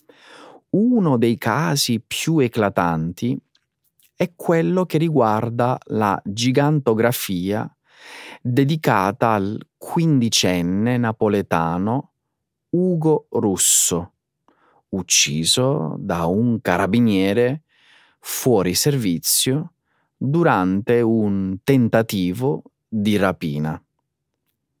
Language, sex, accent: Italian, male, native